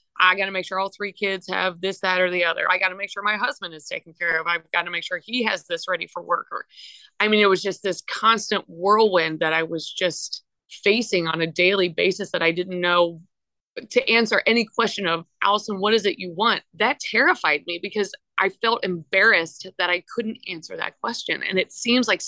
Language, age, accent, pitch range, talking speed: English, 30-49, American, 175-210 Hz, 230 wpm